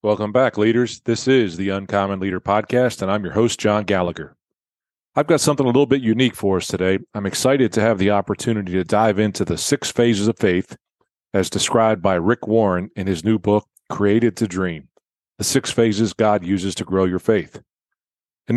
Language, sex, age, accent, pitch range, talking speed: English, male, 40-59, American, 95-115 Hz, 195 wpm